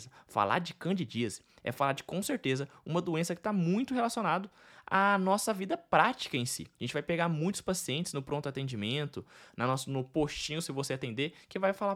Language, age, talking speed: Portuguese, 20-39, 185 wpm